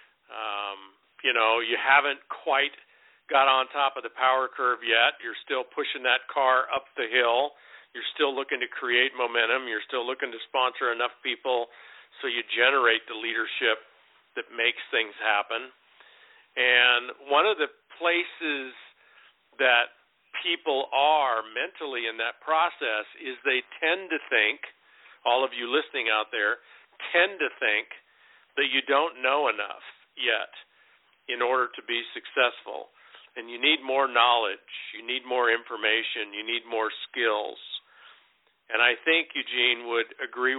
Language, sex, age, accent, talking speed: English, male, 50-69, American, 150 wpm